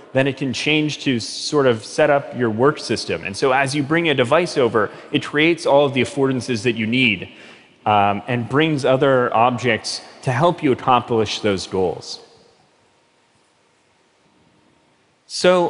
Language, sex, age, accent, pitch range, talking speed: Russian, male, 30-49, American, 120-170 Hz, 155 wpm